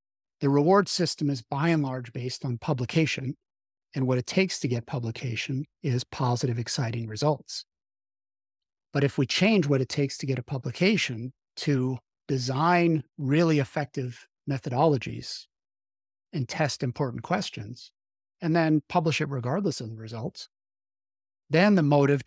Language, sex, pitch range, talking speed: English, male, 125-150 Hz, 140 wpm